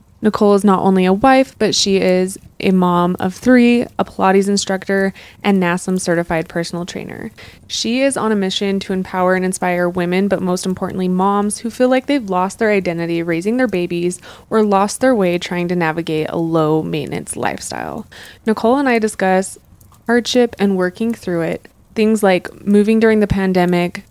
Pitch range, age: 180-220 Hz, 20-39